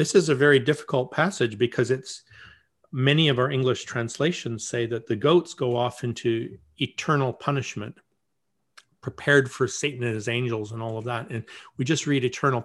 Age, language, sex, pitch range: 50-69, English, male, 120-150 Hz